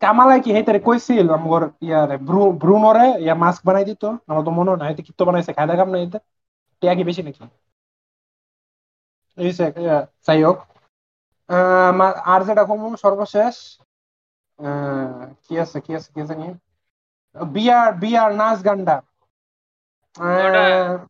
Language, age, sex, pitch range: Bengali, 30-49, male, 165-220 Hz